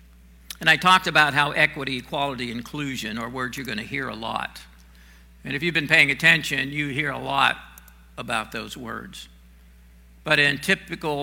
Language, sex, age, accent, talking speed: English, male, 60-79, American, 165 wpm